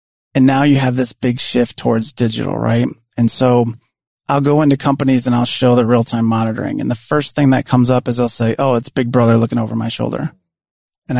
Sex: male